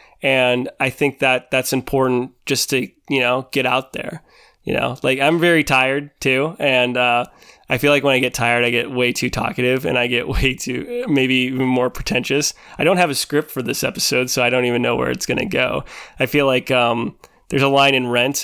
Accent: American